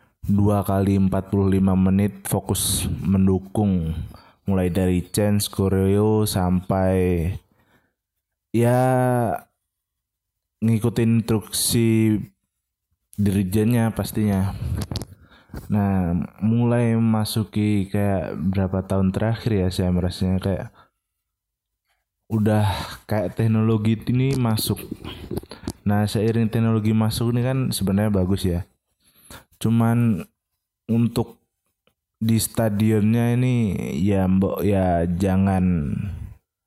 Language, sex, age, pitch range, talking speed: Indonesian, male, 20-39, 95-110 Hz, 80 wpm